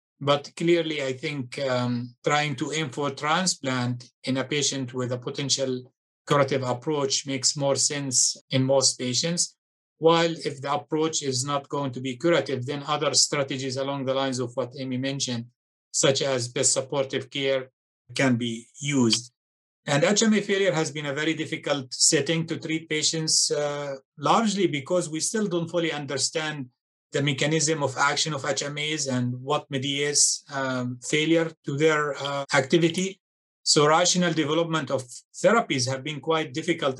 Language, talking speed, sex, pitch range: English, 155 wpm, male, 135-160 Hz